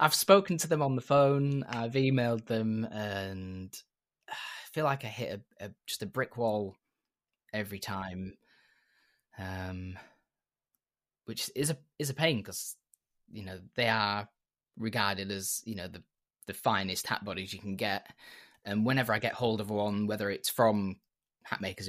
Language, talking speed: English, 160 wpm